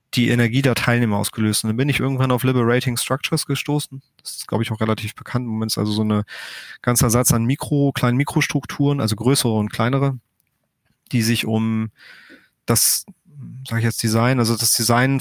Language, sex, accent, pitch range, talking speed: German, male, German, 110-130 Hz, 190 wpm